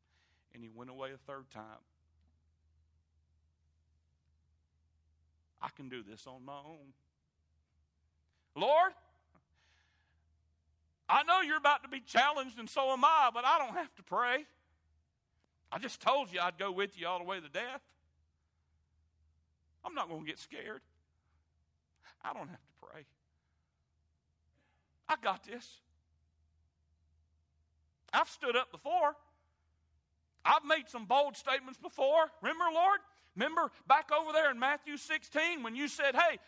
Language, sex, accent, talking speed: English, male, American, 135 wpm